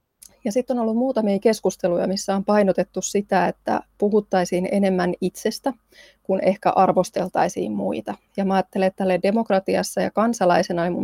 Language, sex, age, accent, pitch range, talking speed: Finnish, female, 20-39, native, 180-210 Hz, 150 wpm